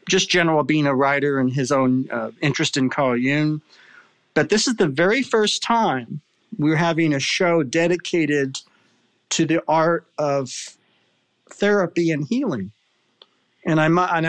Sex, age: male, 40-59